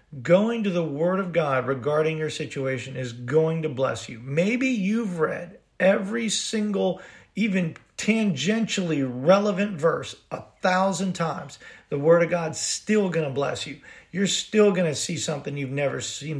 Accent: American